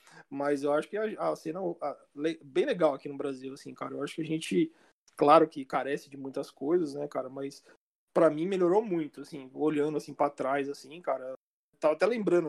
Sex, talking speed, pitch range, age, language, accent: male, 200 wpm, 145-200 Hz, 20-39, Portuguese, Brazilian